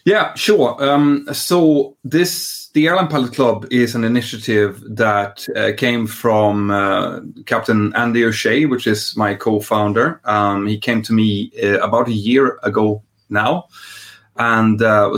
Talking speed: 145 wpm